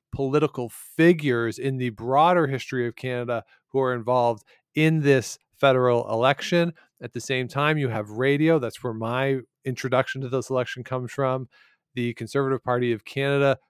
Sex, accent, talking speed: male, American, 160 wpm